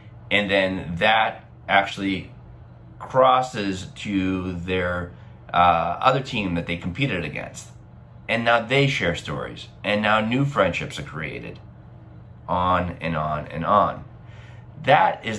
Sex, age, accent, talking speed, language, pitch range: male, 30-49, American, 125 wpm, English, 90-115 Hz